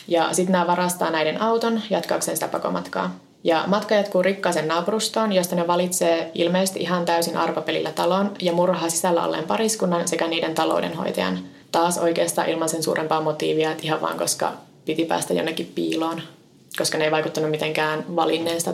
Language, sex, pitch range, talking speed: Finnish, female, 165-190 Hz, 150 wpm